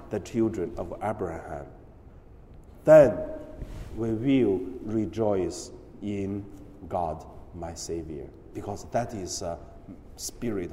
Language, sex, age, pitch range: Chinese, male, 50-69, 100-170 Hz